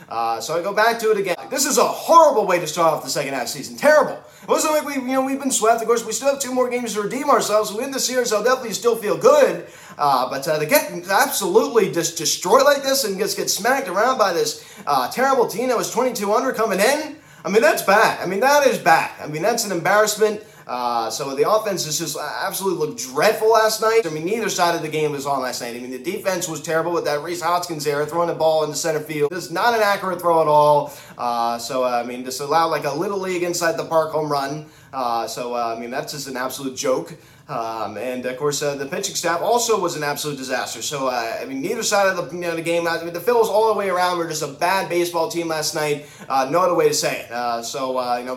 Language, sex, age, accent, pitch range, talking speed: English, male, 30-49, American, 145-210 Hz, 270 wpm